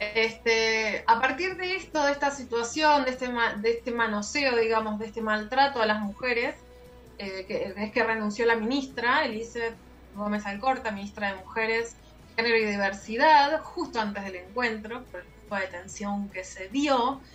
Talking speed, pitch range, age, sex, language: 165 wpm, 200-255 Hz, 20-39, female, Spanish